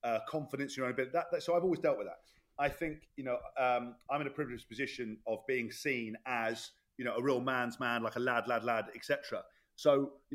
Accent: British